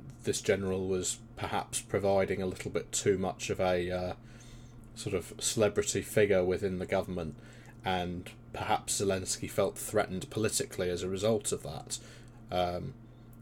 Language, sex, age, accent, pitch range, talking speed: English, male, 20-39, British, 95-120 Hz, 145 wpm